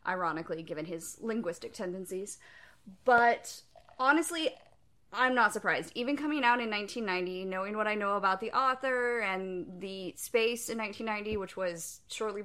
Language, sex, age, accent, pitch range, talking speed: English, female, 20-39, American, 190-235 Hz, 145 wpm